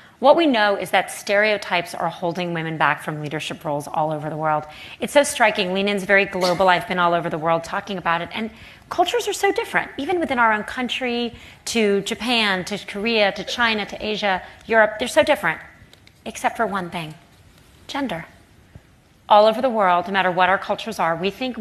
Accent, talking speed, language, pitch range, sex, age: American, 195 wpm, English, 175-240 Hz, female, 30-49